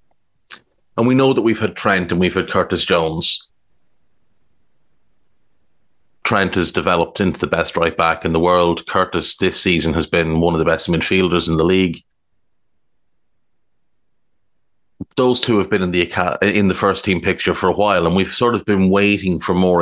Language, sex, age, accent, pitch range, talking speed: English, male, 30-49, Irish, 85-105 Hz, 175 wpm